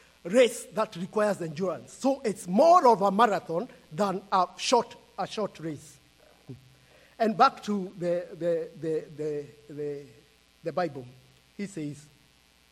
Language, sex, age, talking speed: English, male, 50-69, 130 wpm